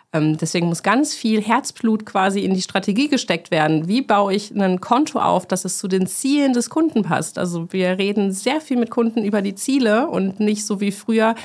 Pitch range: 175-220 Hz